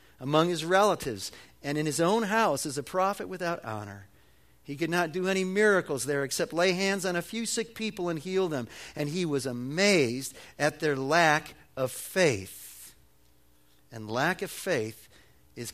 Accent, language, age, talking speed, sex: American, English, 50-69, 170 wpm, male